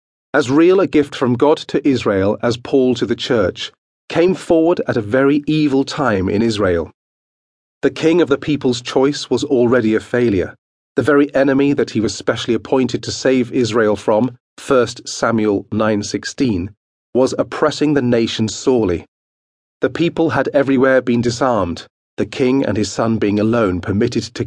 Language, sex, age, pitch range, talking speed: English, male, 40-59, 115-140 Hz, 165 wpm